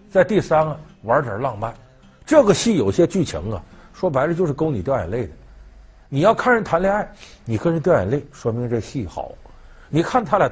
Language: Chinese